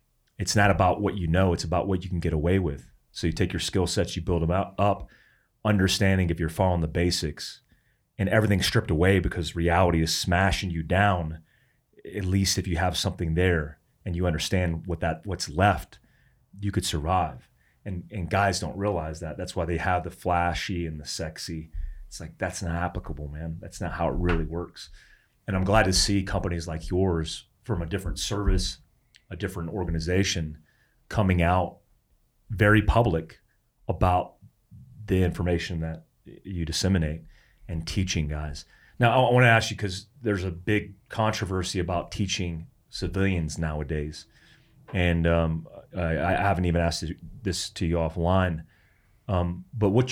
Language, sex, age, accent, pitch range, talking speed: English, male, 30-49, American, 85-100 Hz, 170 wpm